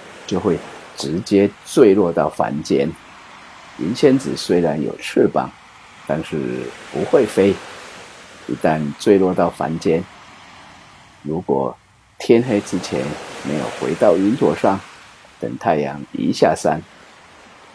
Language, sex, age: Chinese, male, 50-69